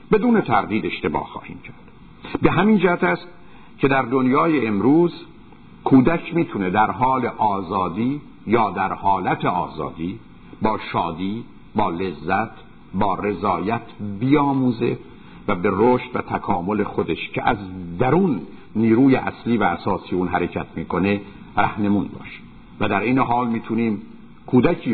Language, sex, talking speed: Persian, male, 130 wpm